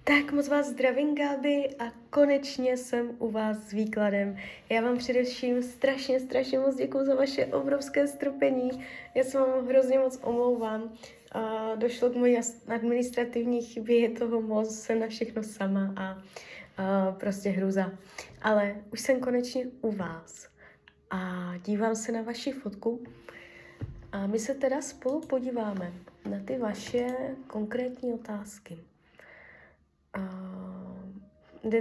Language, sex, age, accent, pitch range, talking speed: Czech, female, 20-39, native, 205-255 Hz, 125 wpm